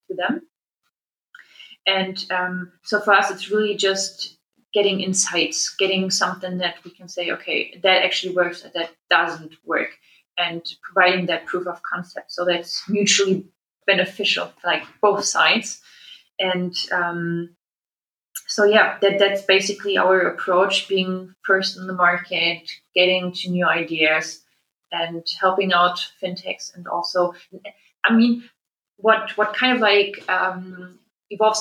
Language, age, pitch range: German, 20-39, 180-200 Hz